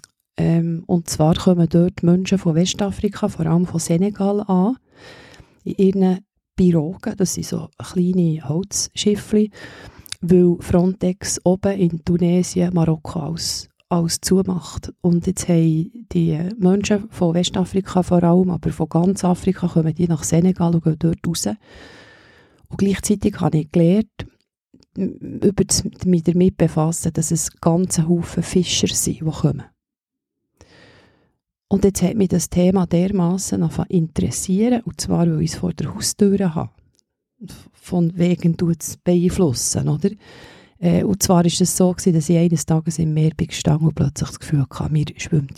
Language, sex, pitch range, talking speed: German, female, 165-185 Hz, 150 wpm